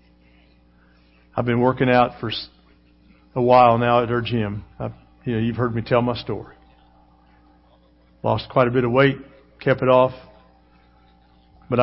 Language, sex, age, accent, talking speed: English, male, 50-69, American, 150 wpm